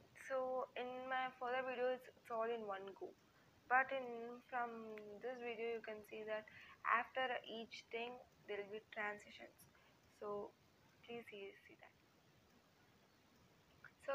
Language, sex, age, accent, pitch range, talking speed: English, female, 20-39, Indian, 210-250 Hz, 135 wpm